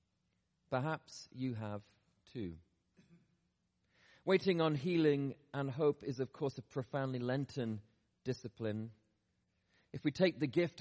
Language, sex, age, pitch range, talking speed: English, male, 40-59, 110-150 Hz, 115 wpm